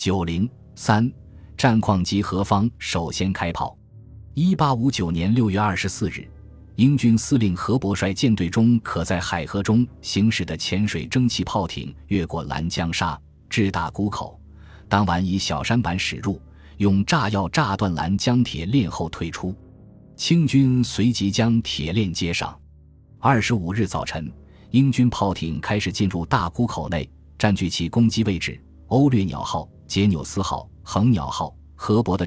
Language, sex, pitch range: Chinese, male, 85-110 Hz